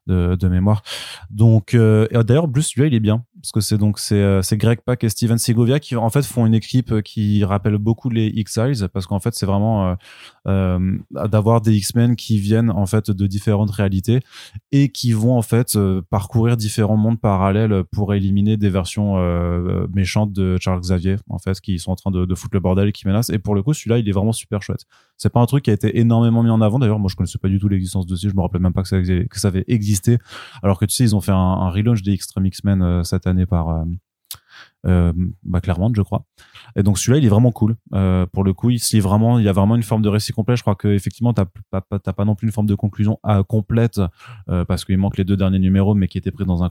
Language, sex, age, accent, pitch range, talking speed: French, male, 20-39, French, 95-115 Hz, 255 wpm